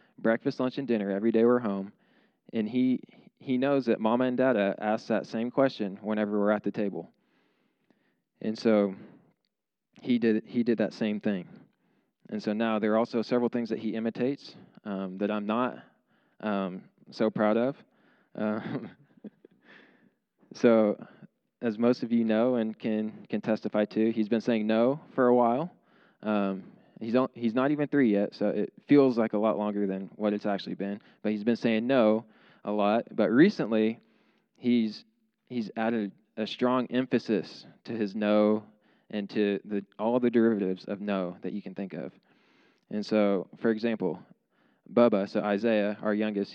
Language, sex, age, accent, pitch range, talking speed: English, male, 20-39, American, 105-120 Hz, 170 wpm